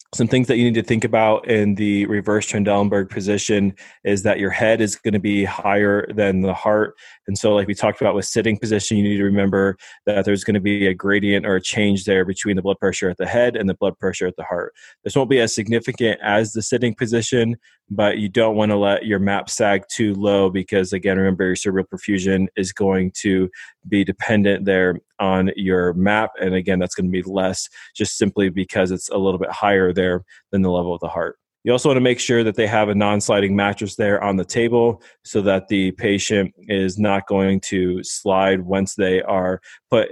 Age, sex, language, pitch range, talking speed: 20-39, male, English, 95-105 Hz, 225 wpm